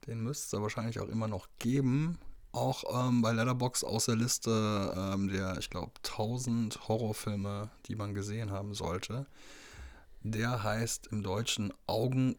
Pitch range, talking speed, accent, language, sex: 105-125 Hz, 150 wpm, German, German, male